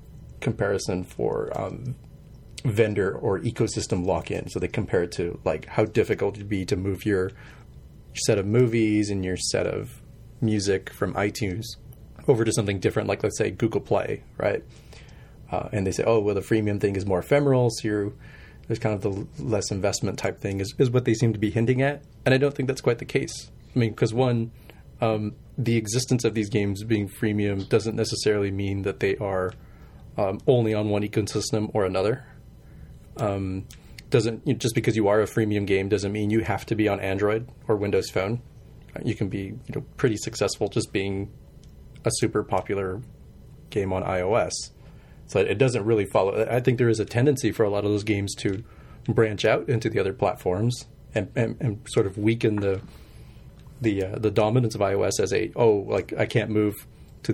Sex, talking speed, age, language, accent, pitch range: male, 195 wpm, 30-49, English, American, 100-120 Hz